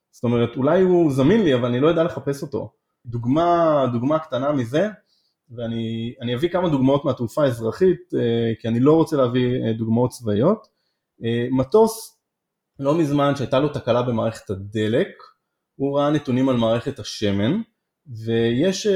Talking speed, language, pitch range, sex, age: 140 wpm, Hebrew, 120-165 Hz, male, 20-39